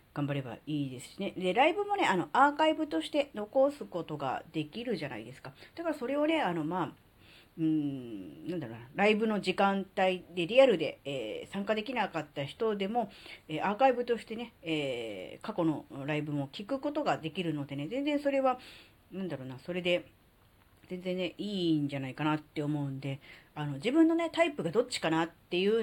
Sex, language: female, Japanese